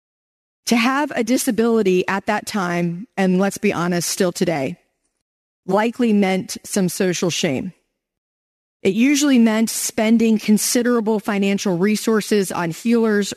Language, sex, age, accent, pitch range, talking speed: English, female, 30-49, American, 175-220 Hz, 120 wpm